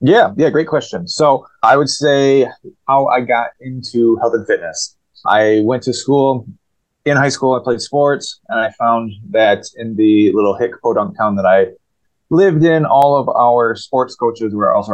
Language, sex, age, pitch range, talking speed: English, male, 20-39, 95-130 Hz, 185 wpm